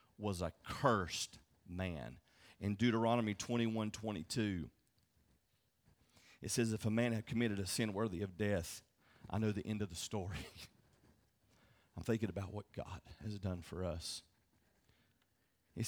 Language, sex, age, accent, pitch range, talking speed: English, male, 40-59, American, 100-120 Hz, 140 wpm